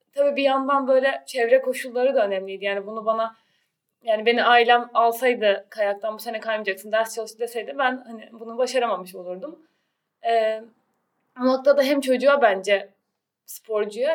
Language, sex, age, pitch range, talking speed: Turkish, female, 20-39, 210-265 Hz, 145 wpm